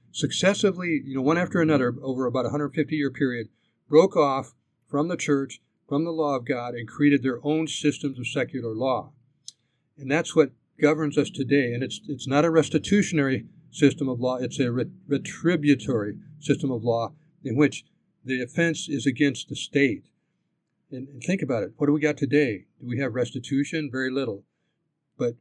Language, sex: English, male